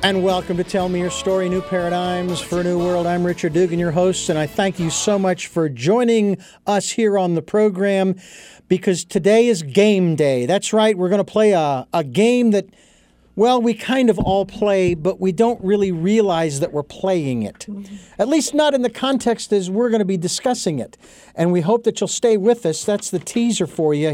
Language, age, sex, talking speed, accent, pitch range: English, 50-69, male, 215 wpm, American, 165-220 Hz